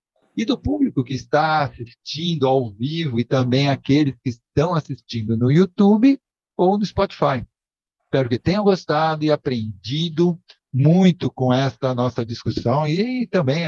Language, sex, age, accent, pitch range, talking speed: Portuguese, male, 50-69, Brazilian, 125-175 Hz, 140 wpm